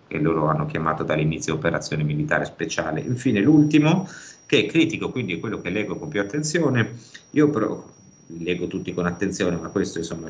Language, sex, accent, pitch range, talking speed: Italian, male, native, 90-115 Hz, 175 wpm